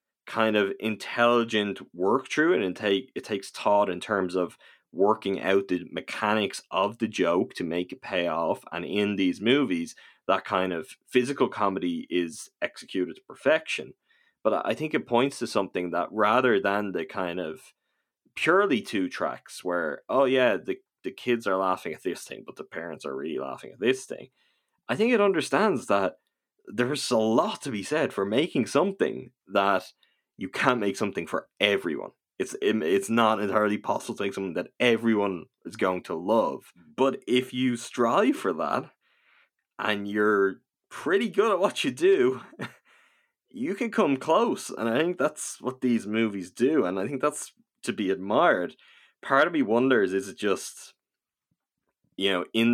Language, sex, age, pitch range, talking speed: English, male, 20-39, 95-135 Hz, 175 wpm